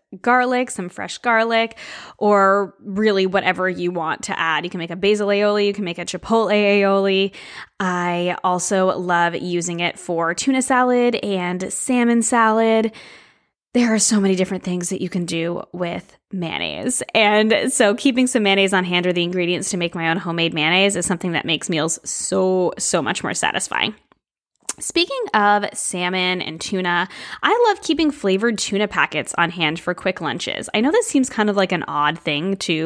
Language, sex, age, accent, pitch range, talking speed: English, female, 10-29, American, 180-240 Hz, 180 wpm